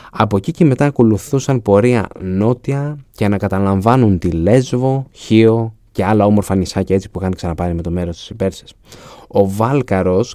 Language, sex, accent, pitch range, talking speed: Greek, male, native, 95-120 Hz, 155 wpm